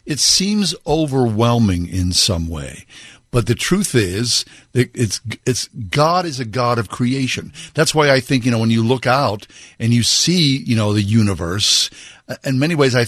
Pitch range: 105-135 Hz